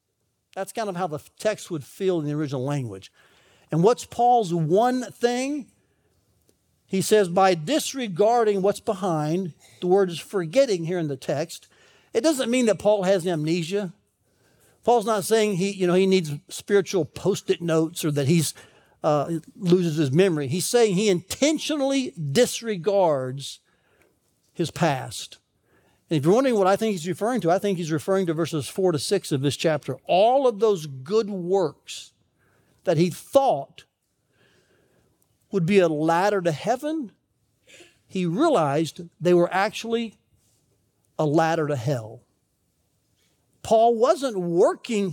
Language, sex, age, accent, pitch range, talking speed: English, male, 60-79, American, 165-225 Hz, 145 wpm